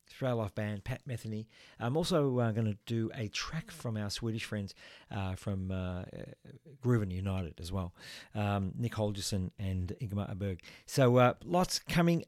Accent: Australian